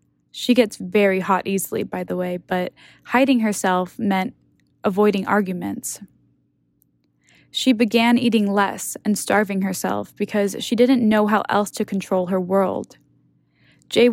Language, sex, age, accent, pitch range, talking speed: English, female, 10-29, American, 190-220 Hz, 135 wpm